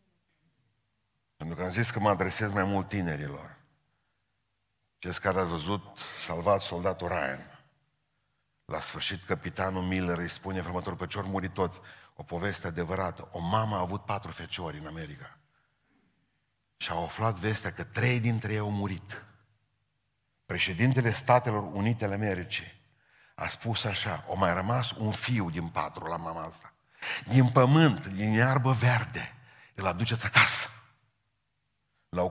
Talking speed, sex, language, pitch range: 135 wpm, male, Romanian, 90-115 Hz